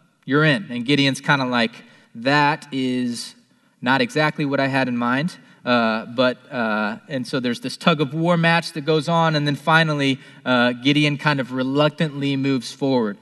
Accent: American